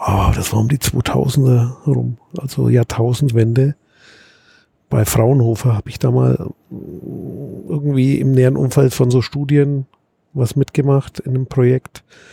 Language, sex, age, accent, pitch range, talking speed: German, male, 50-69, German, 120-145 Hz, 130 wpm